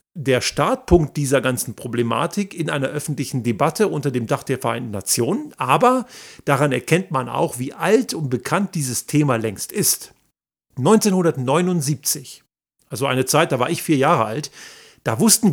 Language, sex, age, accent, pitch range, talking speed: German, male, 50-69, German, 130-180 Hz, 155 wpm